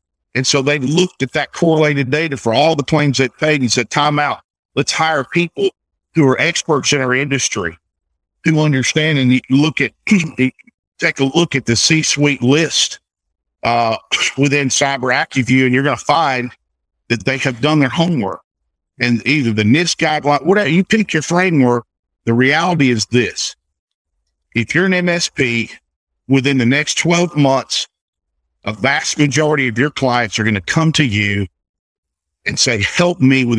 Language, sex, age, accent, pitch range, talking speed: English, male, 50-69, American, 105-150 Hz, 170 wpm